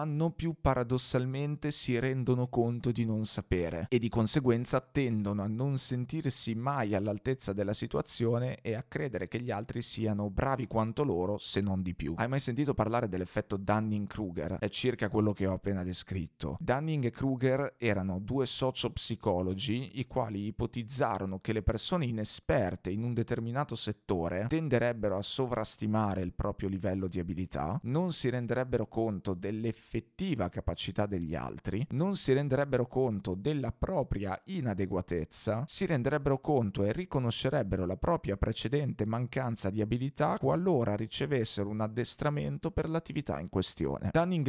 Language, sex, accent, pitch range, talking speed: Italian, male, native, 100-130 Hz, 145 wpm